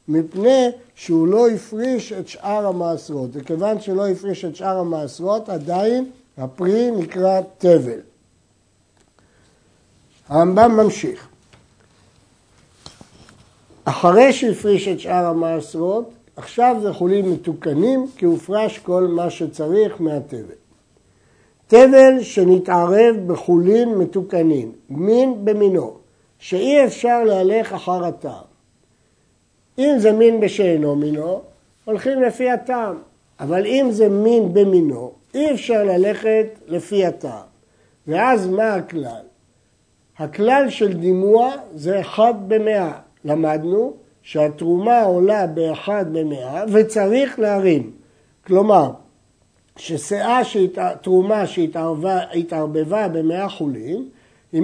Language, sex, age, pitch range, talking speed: Hebrew, male, 60-79, 165-220 Hz, 95 wpm